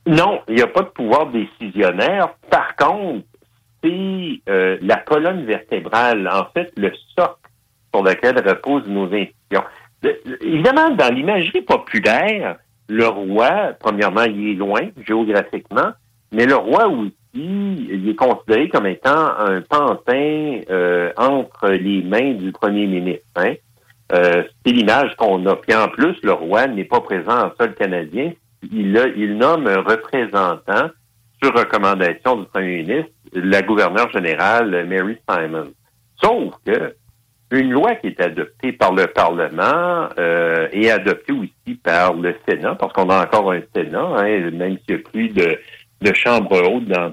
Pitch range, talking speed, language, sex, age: 100-130 Hz, 155 wpm, French, male, 60-79